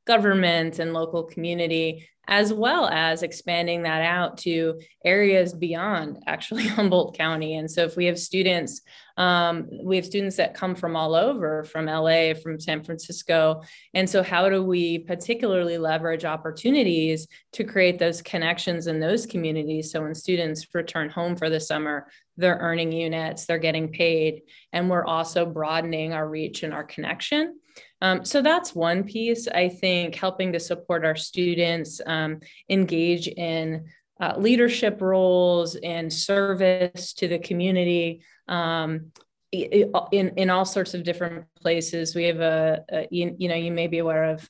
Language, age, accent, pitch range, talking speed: English, 20-39, American, 160-185 Hz, 160 wpm